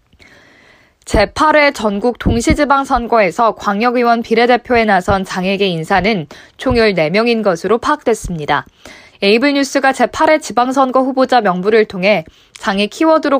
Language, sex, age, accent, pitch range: Korean, female, 20-39, native, 200-255 Hz